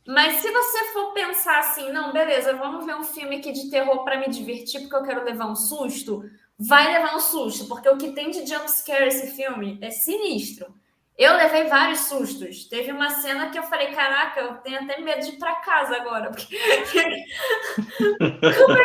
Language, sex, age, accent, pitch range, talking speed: Portuguese, female, 20-39, Brazilian, 265-350 Hz, 190 wpm